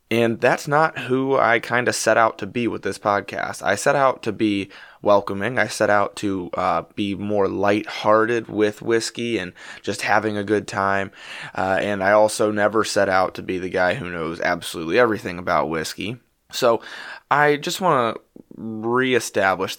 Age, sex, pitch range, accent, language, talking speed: 20-39, male, 100-125 Hz, American, English, 180 wpm